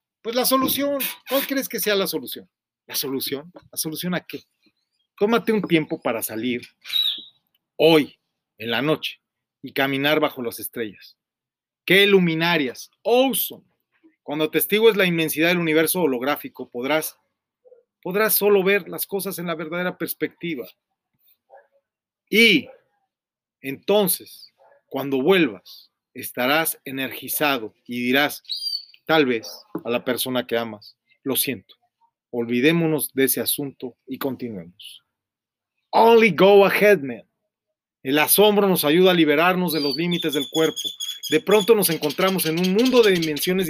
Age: 40-59